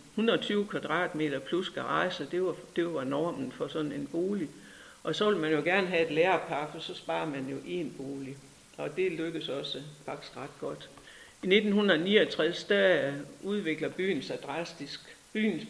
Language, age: Danish, 60-79